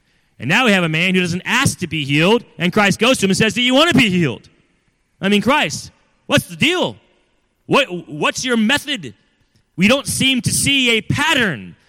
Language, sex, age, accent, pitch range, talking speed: English, male, 30-49, American, 150-225 Hz, 205 wpm